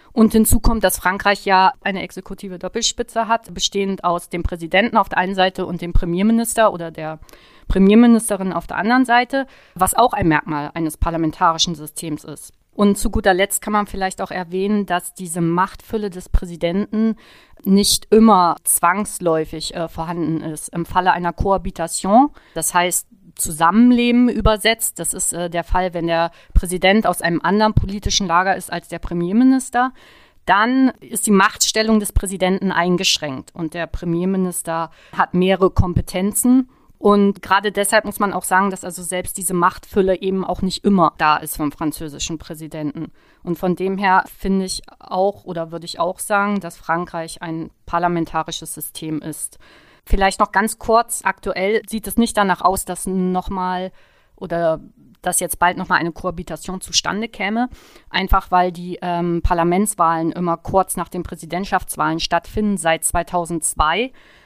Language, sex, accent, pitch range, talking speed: German, female, German, 170-205 Hz, 155 wpm